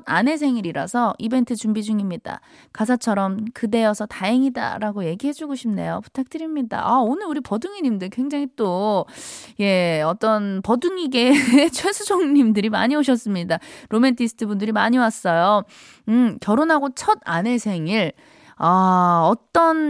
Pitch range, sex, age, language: 185-265 Hz, female, 20-39, Korean